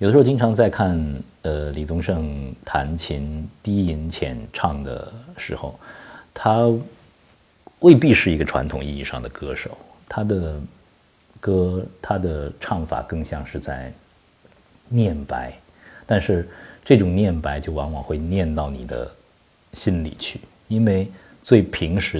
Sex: male